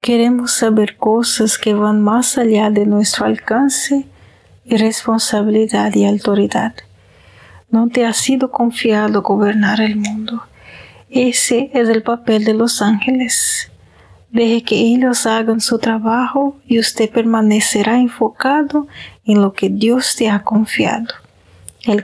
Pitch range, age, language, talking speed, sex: 205-240 Hz, 40-59, Spanish, 130 wpm, female